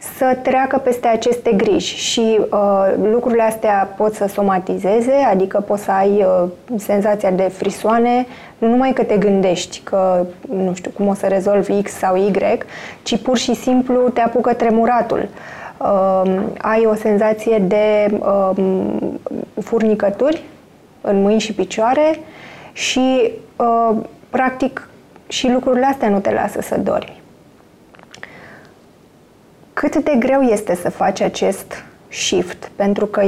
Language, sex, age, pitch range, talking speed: Romanian, female, 20-39, 200-250 Hz, 125 wpm